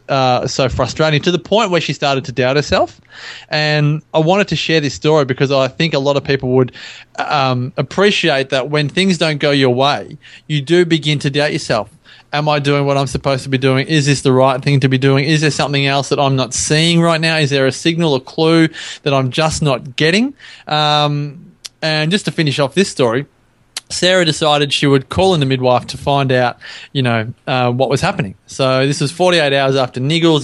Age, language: 20-39, English